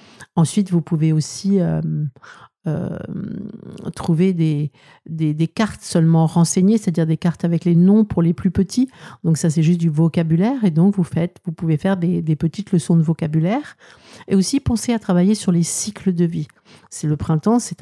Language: French